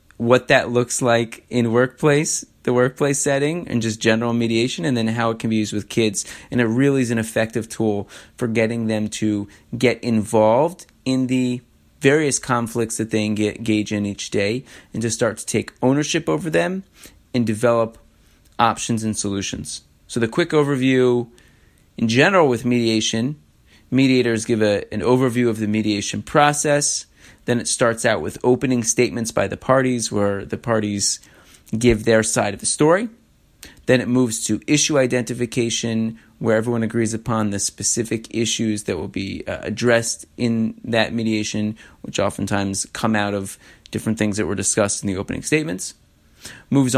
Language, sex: English, male